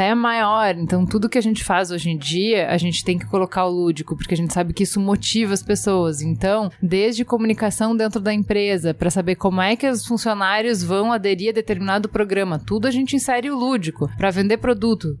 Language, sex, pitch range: Portuguese, female, 185-225 Hz